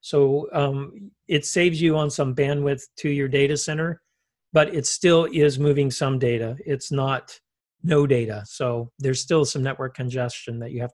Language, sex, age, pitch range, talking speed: English, male, 50-69, 130-155 Hz, 175 wpm